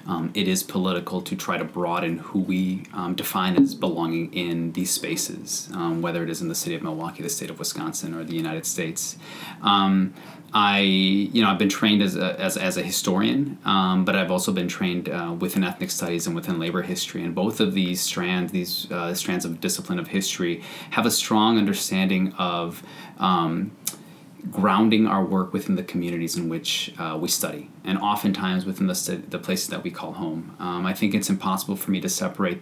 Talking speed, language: 200 wpm, English